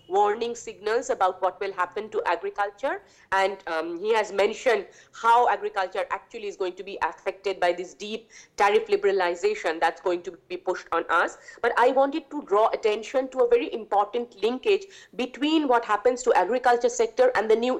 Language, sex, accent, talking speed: English, female, Indian, 180 wpm